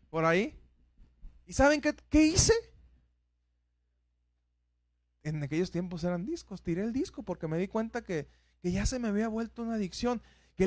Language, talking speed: Spanish, 165 wpm